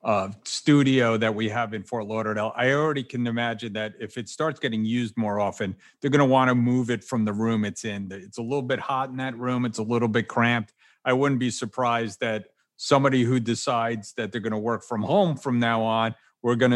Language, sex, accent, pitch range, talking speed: English, male, American, 115-145 Hz, 235 wpm